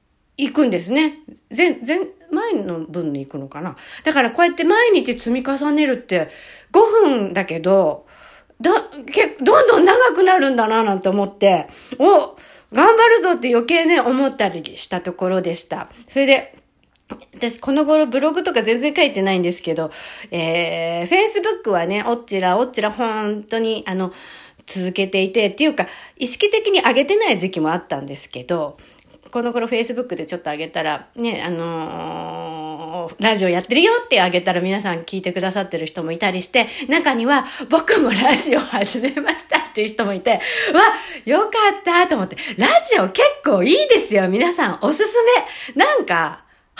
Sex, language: female, Japanese